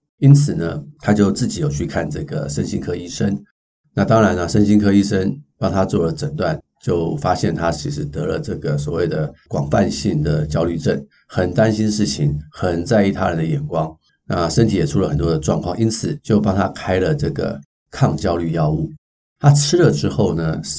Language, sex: Chinese, male